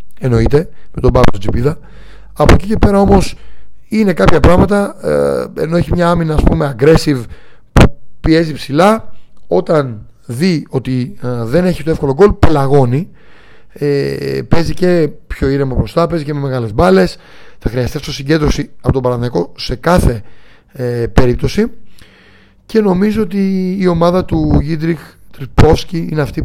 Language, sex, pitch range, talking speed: Greek, male, 125-170 Hz, 145 wpm